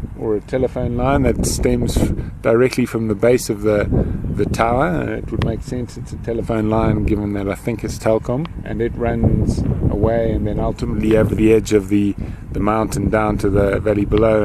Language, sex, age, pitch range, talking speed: English, male, 30-49, 105-125 Hz, 195 wpm